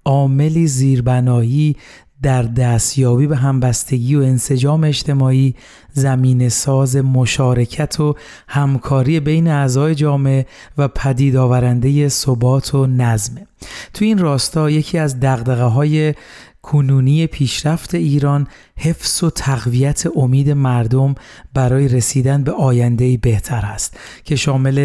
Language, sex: Persian, male